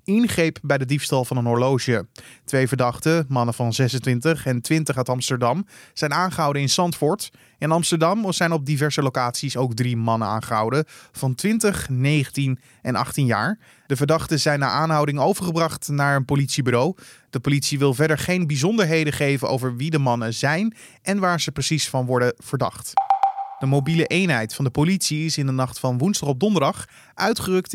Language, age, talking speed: Dutch, 20-39, 170 wpm